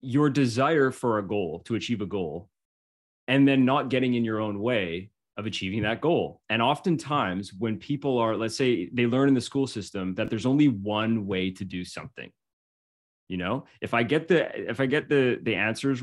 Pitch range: 100-130 Hz